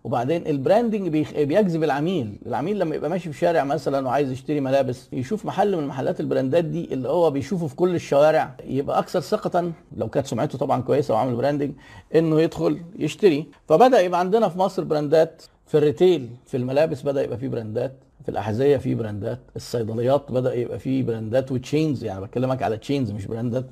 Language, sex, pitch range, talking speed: Arabic, male, 135-180 Hz, 180 wpm